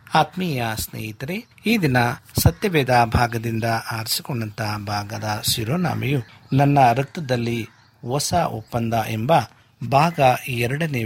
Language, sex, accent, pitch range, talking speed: Kannada, male, native, 115-140 Hz, 85 wpm